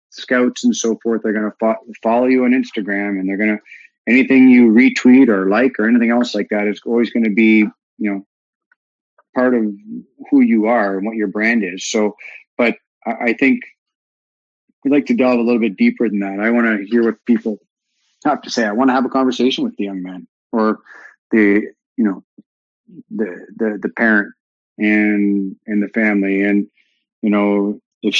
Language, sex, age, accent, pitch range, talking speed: English, male, 30-49, American, 105-125 Hz, 200 wpm